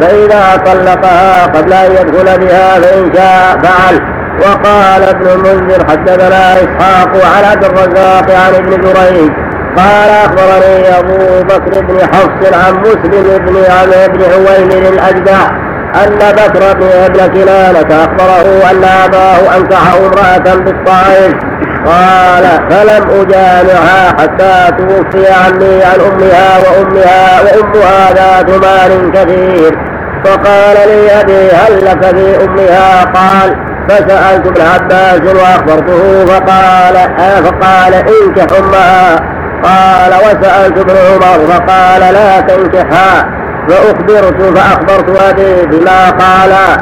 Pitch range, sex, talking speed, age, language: 185-190 Hz, male, 110 wpm, 50-69, Arabic